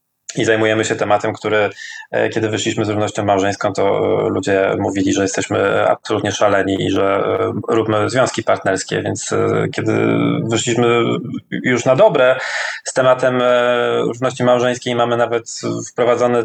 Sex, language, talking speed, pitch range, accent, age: male, Polish, 130 wpm, 105-120 Hz, native, 20-39